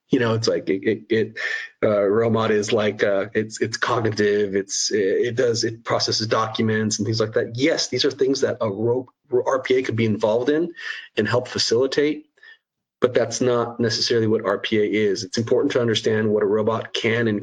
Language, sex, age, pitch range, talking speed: English, male, 30-49, 110-130 Hz, 195 wpm